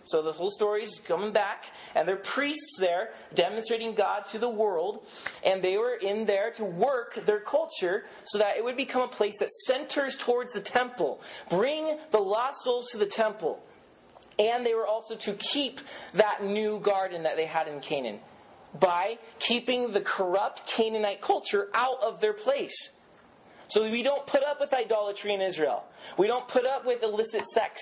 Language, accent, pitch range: English, American, 195-255 Hz